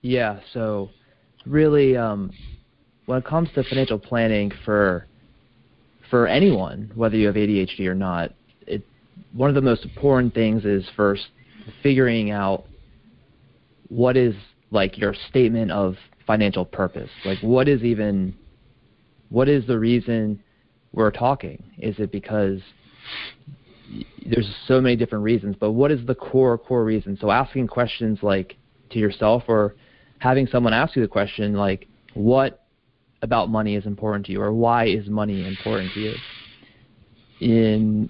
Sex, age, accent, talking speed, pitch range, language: male, 30-49, American, 145 wpm, 100-125 Hz, English